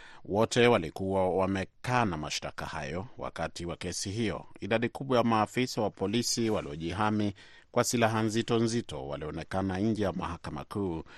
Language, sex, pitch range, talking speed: Swahili, male, 90-115 Hz, 135 wpm